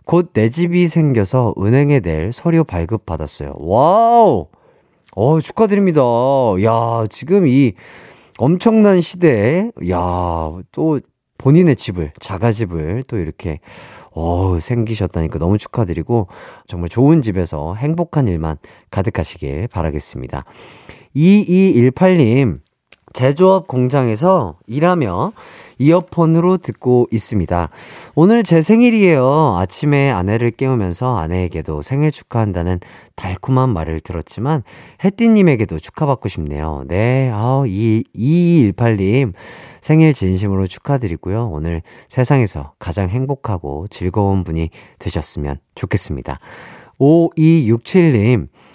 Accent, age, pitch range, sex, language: native, 30-49, 90-155 Hz, male, Korean